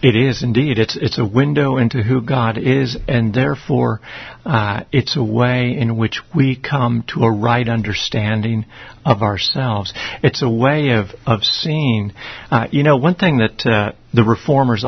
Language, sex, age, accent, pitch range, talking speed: English, male, 50-69, American, 115-145 Hz, 170 wpm